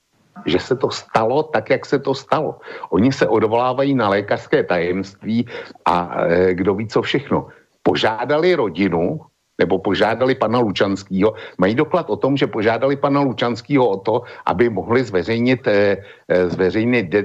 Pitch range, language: 95-135 Hz, Slovak